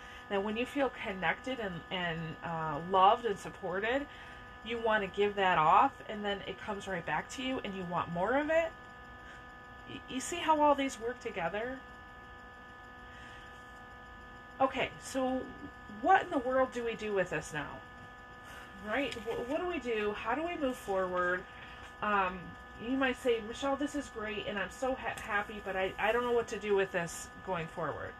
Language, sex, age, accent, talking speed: English, female, 30-49, American, 185 wpm